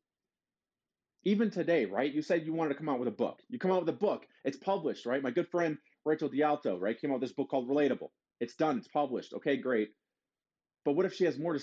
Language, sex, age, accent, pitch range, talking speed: English, male, 30-49, American, 150-210 Hz, 250 wpm